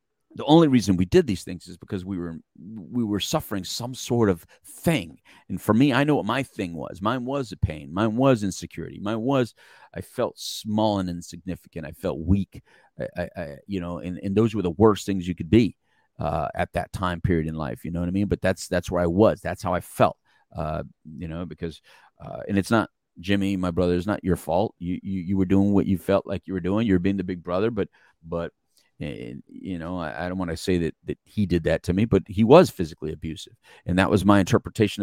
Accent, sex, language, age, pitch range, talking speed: American, male, English, 40-59, 90-110 Hz, 240 wpm